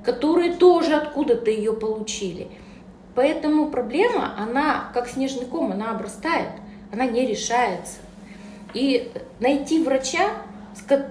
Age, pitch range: 20-39, 205-265 Hz